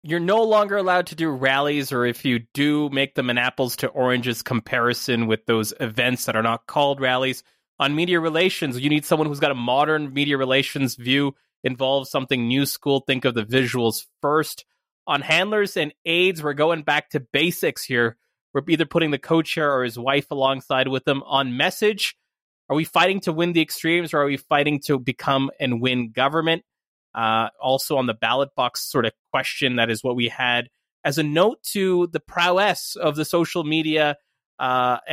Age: 20-39